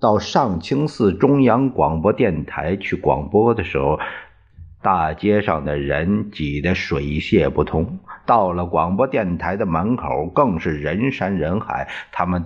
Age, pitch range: 50-69, 80-105 Hz